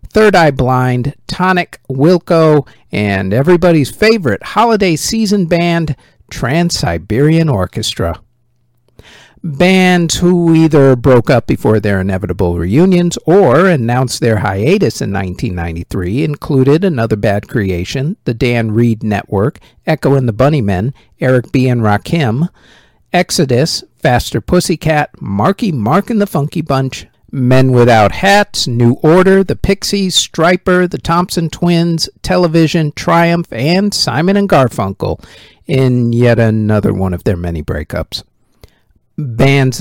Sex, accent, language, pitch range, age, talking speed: male, American, English, 115-170 Hz, 50-69, 120 wpm